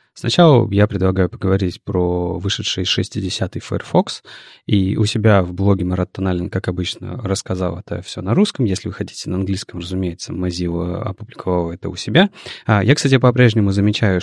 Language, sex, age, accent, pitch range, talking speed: Russian, male, 30-49, native, 95-120 Hz, 160 wpm